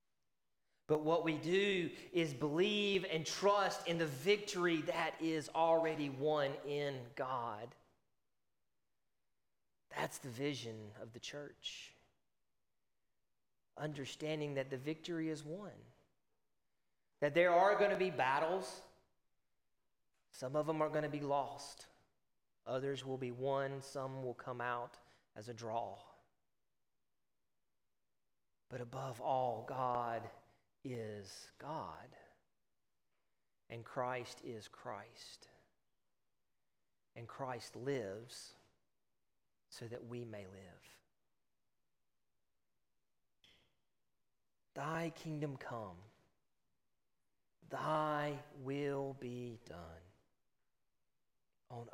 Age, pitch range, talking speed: 30-49, 120-155 Hz, 95 wpm